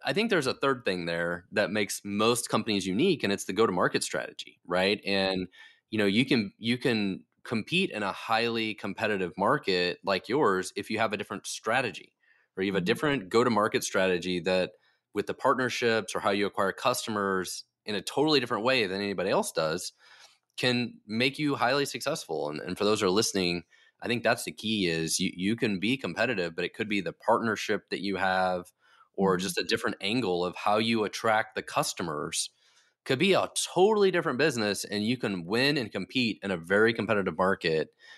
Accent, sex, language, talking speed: American, male, English, 195 wpm